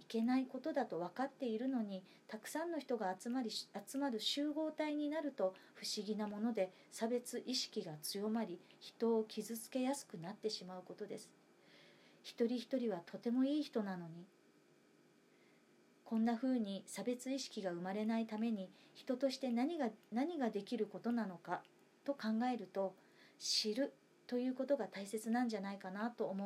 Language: Japanese